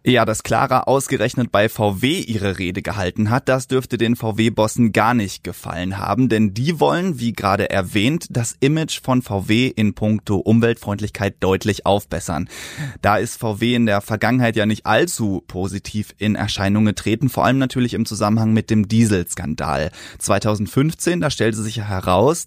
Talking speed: 160 wpm